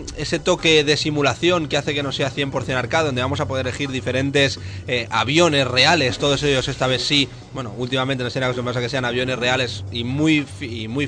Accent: Spanish